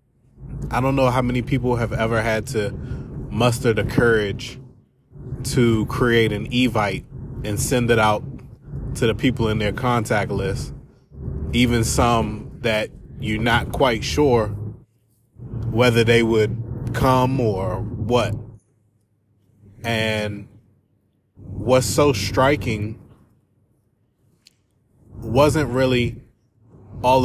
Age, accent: 20-39, American